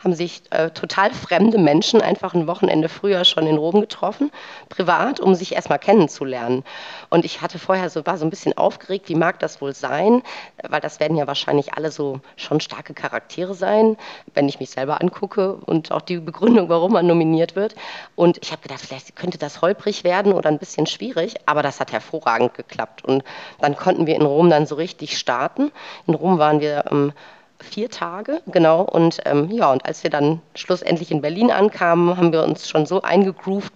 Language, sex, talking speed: German, female, 195 wpm